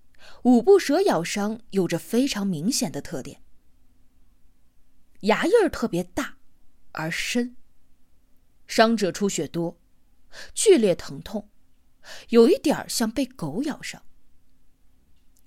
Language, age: Chinese, 20-39